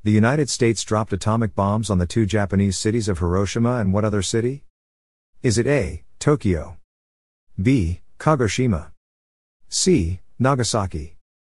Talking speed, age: 130 wpm, 50-69